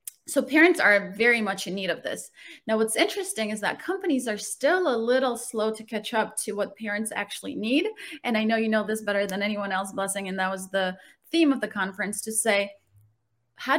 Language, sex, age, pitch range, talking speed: English, female, 30-49, 200-255 Hz, 220 wpm